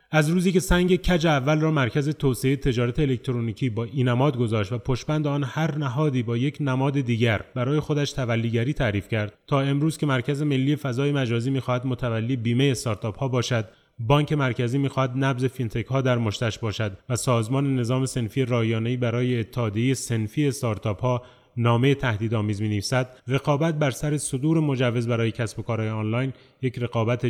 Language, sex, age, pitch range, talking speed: Persian, male, 30-49, 115-140 Hz, 155 wpm